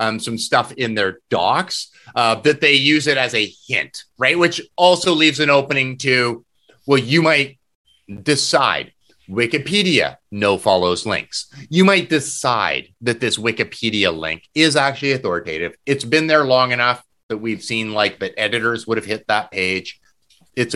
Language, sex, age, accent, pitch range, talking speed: English, male, 30-49, American, 110-150 Hz, 160 wpm